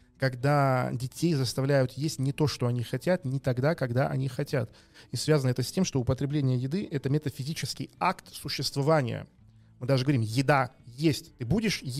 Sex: male